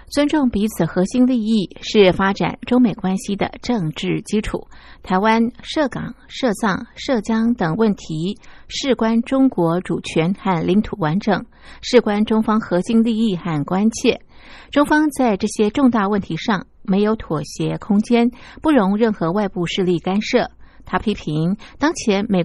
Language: Chinese